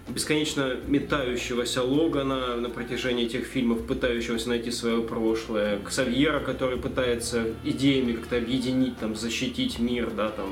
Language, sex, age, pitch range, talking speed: Russian, male, 20-39, 110-130 Hz, 125 wpm